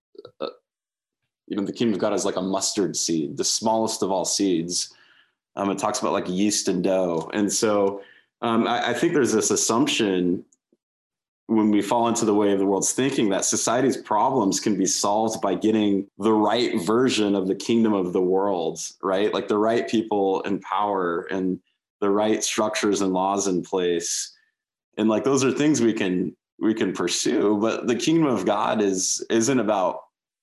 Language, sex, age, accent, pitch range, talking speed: English, male, 20-39, American, 95-115 Hz, 185 wpm